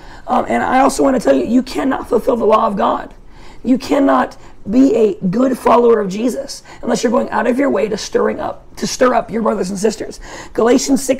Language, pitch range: English, 215-260 Hz